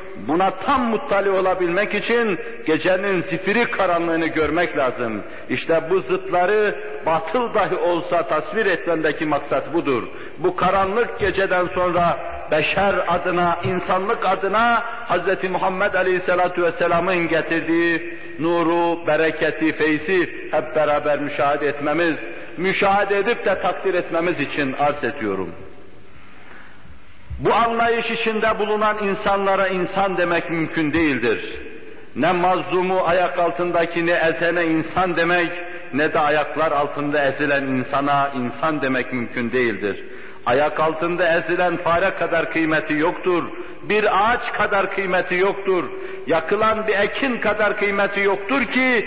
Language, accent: Turkish, native